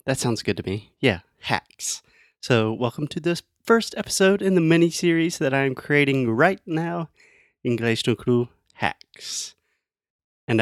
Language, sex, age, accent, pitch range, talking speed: Portuguese, male, 30-49, American, 110-145 Hz, 145 wpm